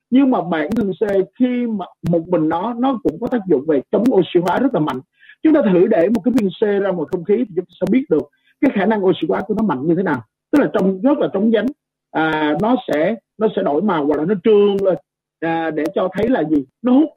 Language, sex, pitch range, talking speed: Vietnamese, male, 165-235 Hz, 275 wpm